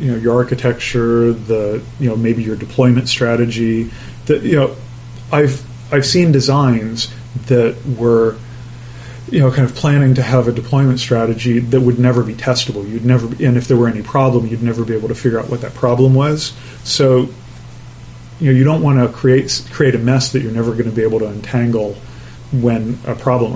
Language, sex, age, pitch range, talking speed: English, male, 30-49, 115-130 Hz, 200 wpm